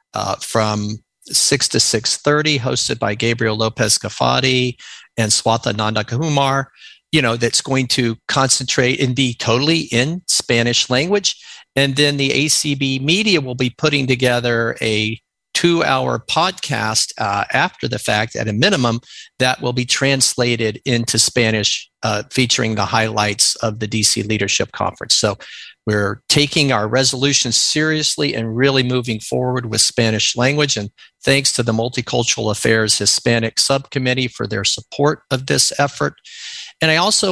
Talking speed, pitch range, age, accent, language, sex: 145 wpm, 115-140 Hz, 50-69, American, English, male